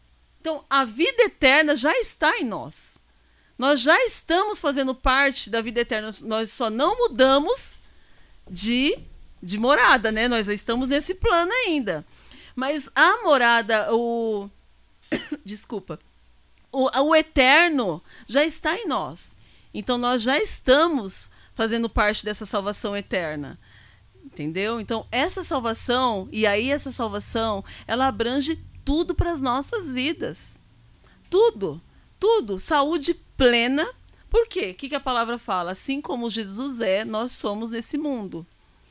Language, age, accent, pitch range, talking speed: Portuguese, 40-59, Brazilian, 210-285 Hz, 130 wpm